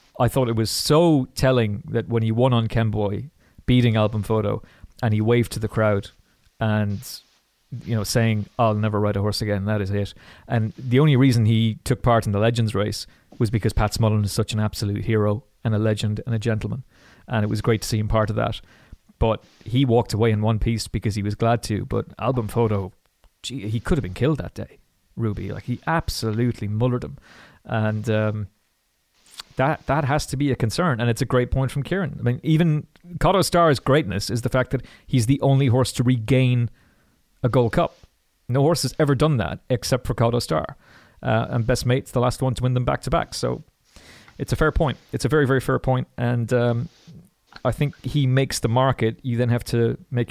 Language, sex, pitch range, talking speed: English, male, 110-130 Hz, 210 wpm